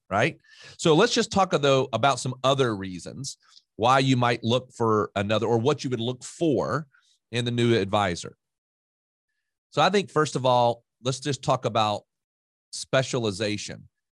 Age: 40-59